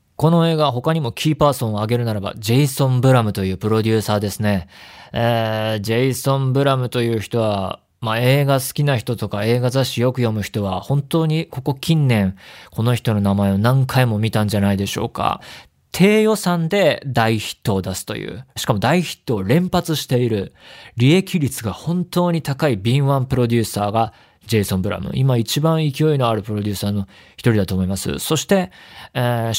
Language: Japanese